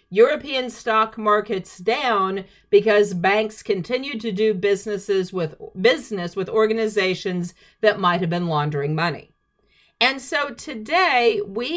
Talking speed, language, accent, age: 120 wpm, English, American, 50-69